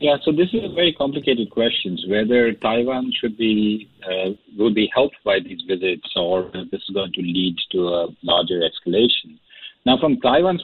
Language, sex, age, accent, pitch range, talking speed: English, male, 50-69, Indian, 100-160 Hz, 190 wpm